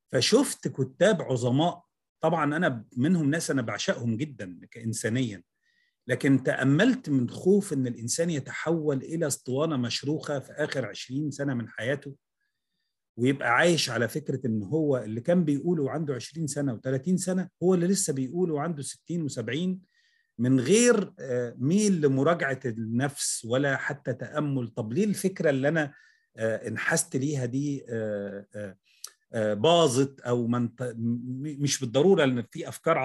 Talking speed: 130 wpm